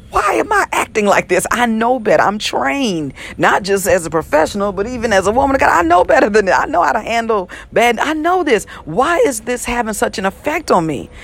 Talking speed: 245 wpm